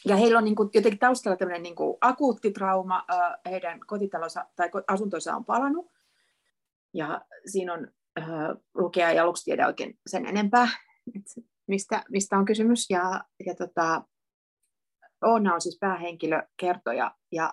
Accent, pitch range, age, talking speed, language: native, 175-215 Hz, 30-49, 135 wpm, Finnish